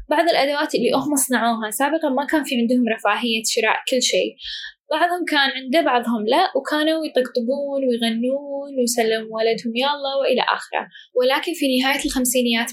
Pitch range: 235-295 Hz